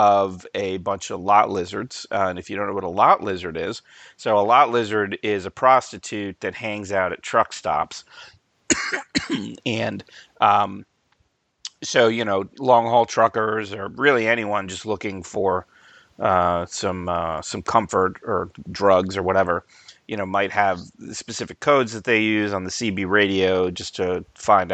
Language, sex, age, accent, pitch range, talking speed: English, male, 30-49, American, 90-110 Hz, 165 wpm